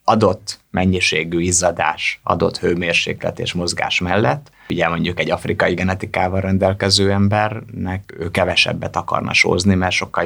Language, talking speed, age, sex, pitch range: Hungarian, 125 wpm, 30-49, male, 85-100 Hz